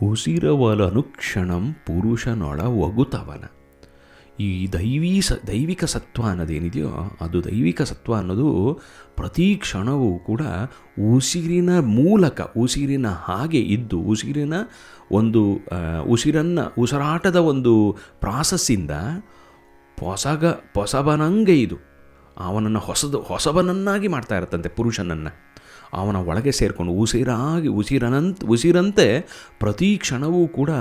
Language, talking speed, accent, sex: Kannada, 85 wpm, native, male